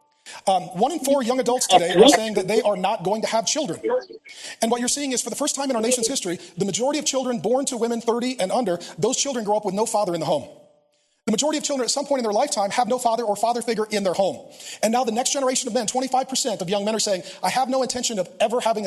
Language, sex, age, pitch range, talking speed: English, male, 40-59, 195-255 Hz, 285 wpm